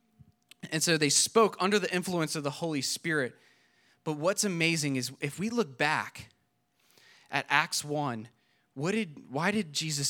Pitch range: 140-185 Hz